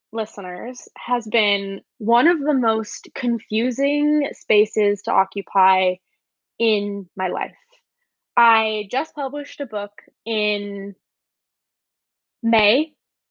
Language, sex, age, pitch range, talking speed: English, female, 10-29, 205-265 Hz, 95 wpm